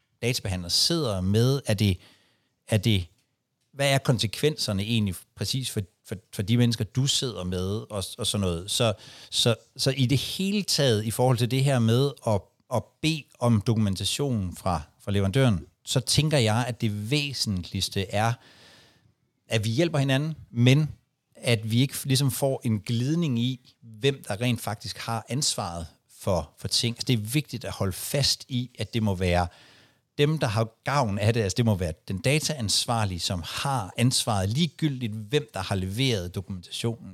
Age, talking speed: 60-79, 175 wpm